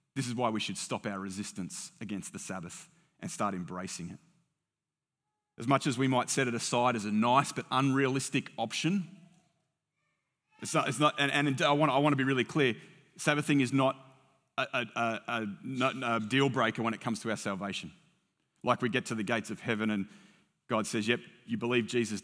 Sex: male